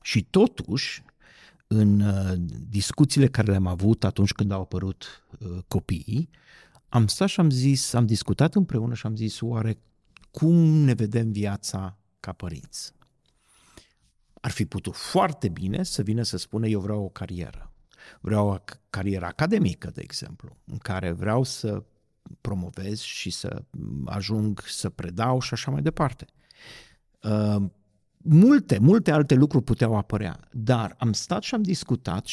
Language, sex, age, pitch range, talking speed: Romanian, male, 50-69, 100-135 Hz, 145 wpm